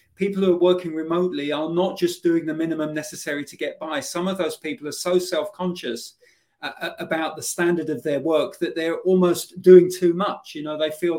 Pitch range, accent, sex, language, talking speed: 145-175 Hz, British, male, English, 205 wpm